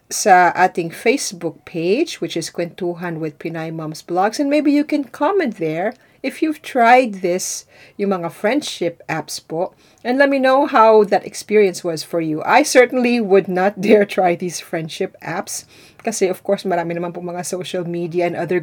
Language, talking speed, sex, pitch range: Filipino, 180 wpm, female, 170-215 Hz